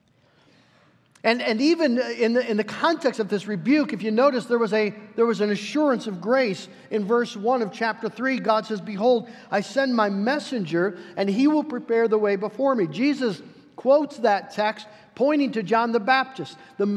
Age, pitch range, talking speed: 50-69, 200-255 Hz, 190 wpm